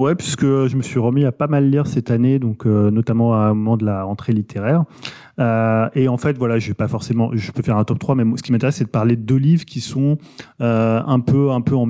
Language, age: French, 20-39